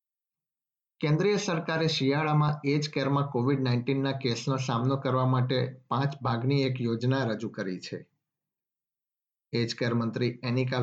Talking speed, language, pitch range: 115 wpm, Gujarati, 120-135 Hz